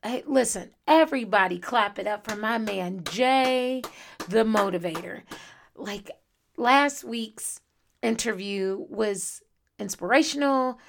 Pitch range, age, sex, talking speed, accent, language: 175-235 Hz, 30-49, female, 95 wpm, American, English